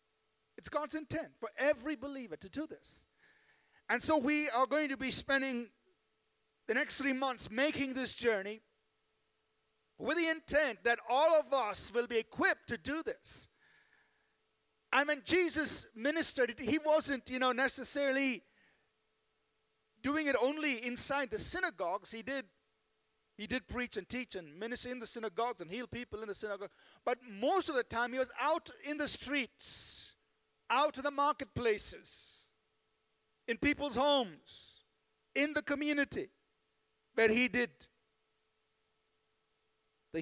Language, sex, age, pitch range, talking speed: English, male, 40-59, 230-290 Hz, 140 wpm